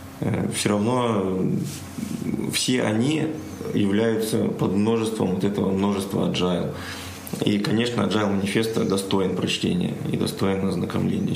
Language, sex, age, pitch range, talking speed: Ukrainian, male, 20-39, 100-115 Hz, 100 wpm